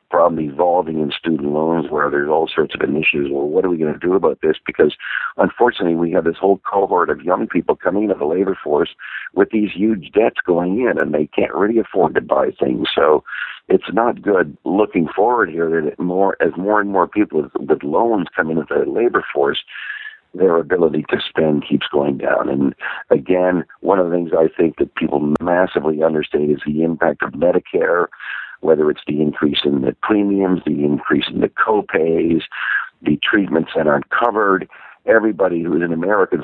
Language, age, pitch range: English, 50-69, 80-105 Hz